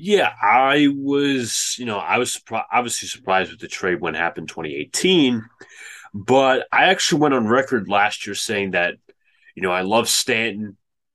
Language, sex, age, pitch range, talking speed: English, male, 30-49, 105-135 Hz, 170 wpm